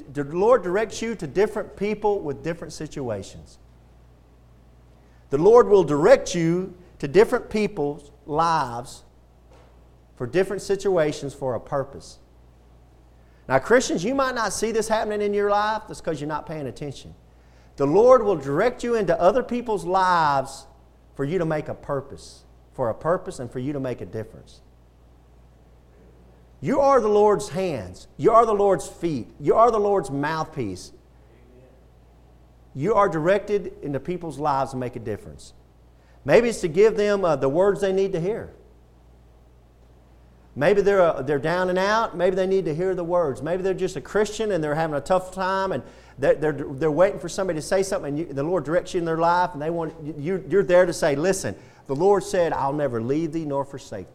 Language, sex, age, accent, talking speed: English, male, 40-59, American, 185 wpm